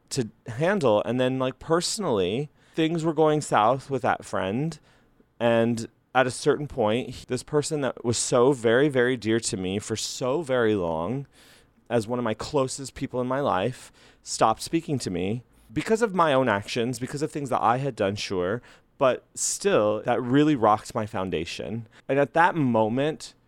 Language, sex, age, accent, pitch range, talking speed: English, male, 30-49, American, 110-140 Hz, 175 wpm